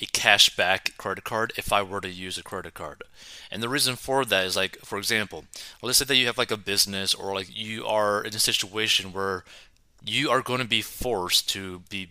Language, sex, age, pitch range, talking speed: English, male, 30-49, 95-110 Hz, 225 wpm